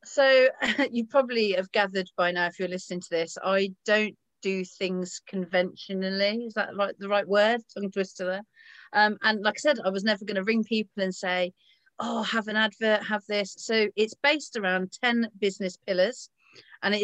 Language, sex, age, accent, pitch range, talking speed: English, female, 40-59, British, 180-220 Hz, 190 wpm